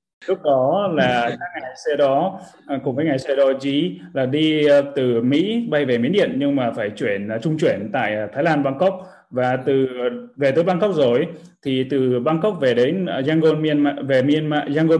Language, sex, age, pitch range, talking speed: Vietnamese, male, 20-39, 125-160 Hz, 185 wpm